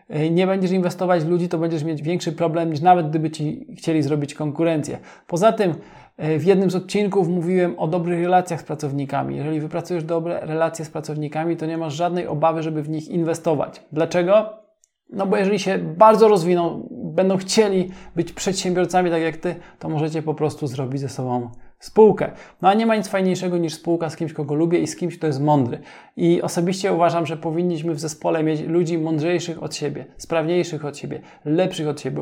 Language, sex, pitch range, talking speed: Polish, male, 155-185 Hz, 190 wpm